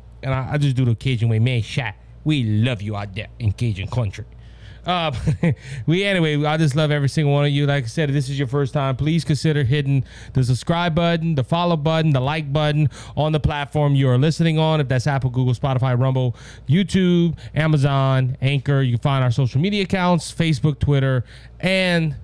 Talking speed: 205 wpm